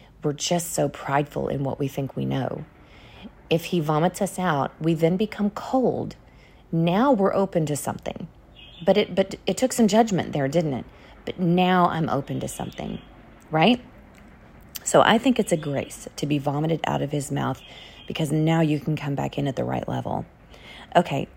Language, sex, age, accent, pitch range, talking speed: English, female, 40-59, American, 140-185 Hz, 185 wpm